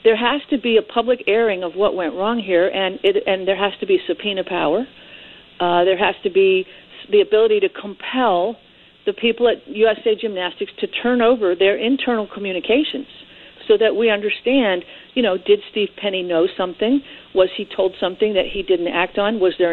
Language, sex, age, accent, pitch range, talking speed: English, female, 50-69, American, 195-275 Hz, 190 wpm